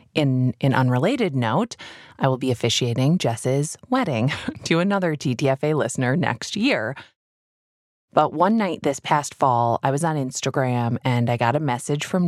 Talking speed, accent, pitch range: 155 wpm, American, 130-160 Hz